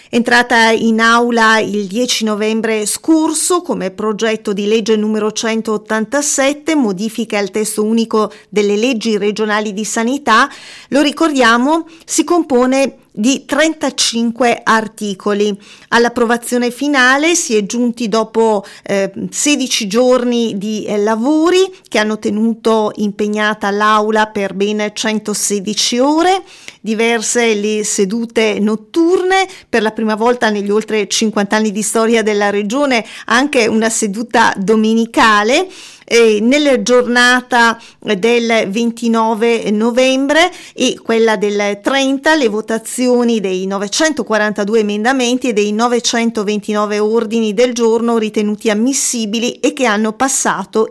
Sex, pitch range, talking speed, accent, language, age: female, 215-245 Hz, 115 wpm, native, Italian, 40-59